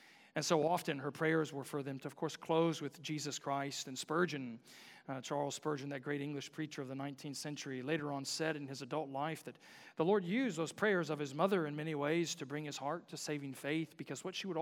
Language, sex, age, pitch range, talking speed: English, male, 40-59, 140-185 Hz, 240 wpm